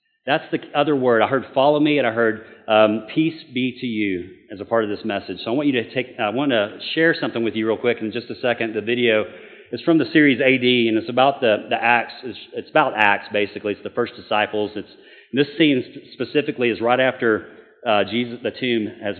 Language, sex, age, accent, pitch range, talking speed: English, male, 40-59, American, 105-125 Hz, 240 wpm